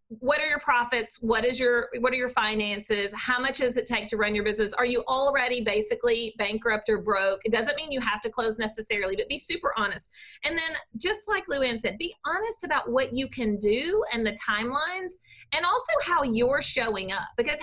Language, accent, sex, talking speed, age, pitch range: English, American, female, 210 wpm, 40-59, 225-310 Hz